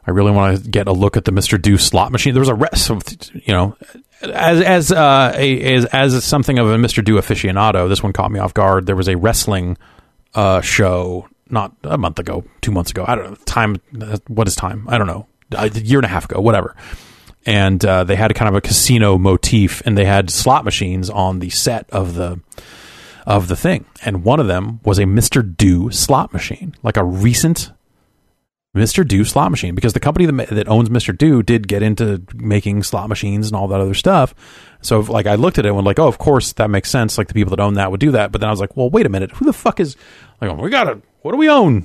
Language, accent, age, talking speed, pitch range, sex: English, American, 30-49, 245 wpm, 95-125 Hz, male